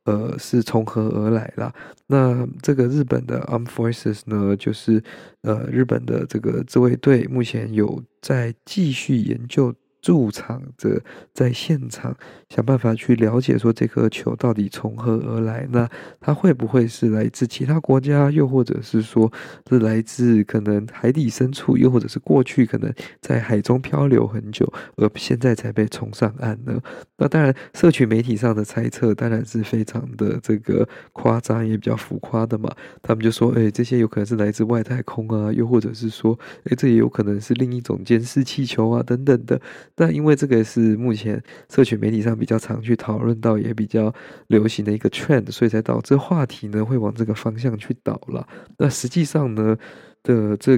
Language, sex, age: Chinese, male, 20-39